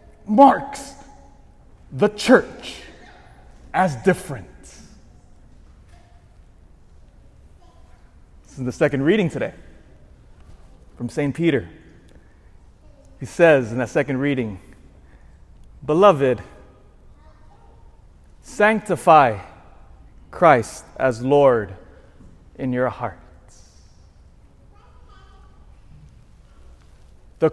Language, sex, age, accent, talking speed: English, male, 30-49, American, 65 wpm